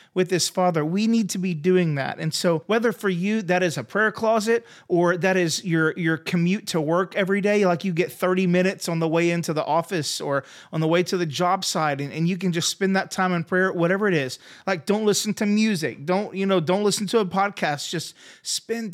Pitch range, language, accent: 160-200 Hz, English, American